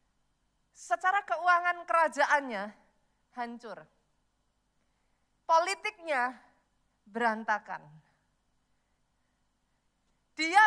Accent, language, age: native, Indonesian, 40-59